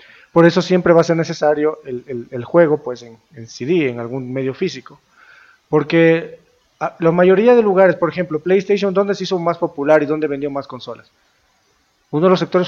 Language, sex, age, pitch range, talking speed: Spanish, male, 40-59, 145-175 Hz, 195 wpm